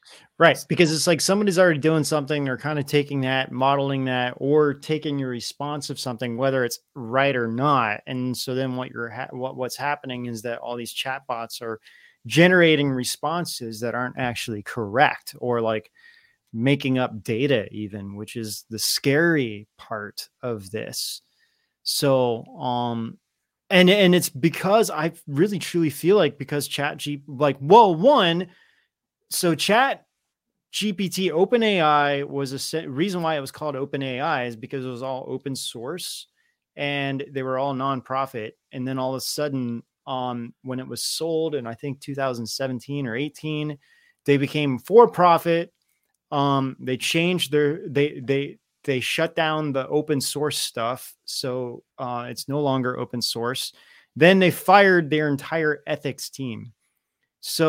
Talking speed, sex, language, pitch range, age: 155 wpm, male, English, 125-155 Hz, 30-49